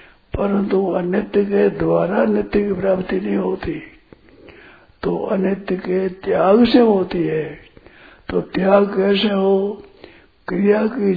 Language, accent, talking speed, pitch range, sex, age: Hindi, native, 125 wpm, 165-205 Hz, male, 60-79